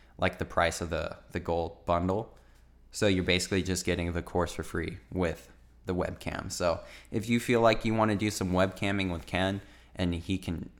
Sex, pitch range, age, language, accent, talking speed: male, 85-95 Hz, 20-39, English, American, 200 wpm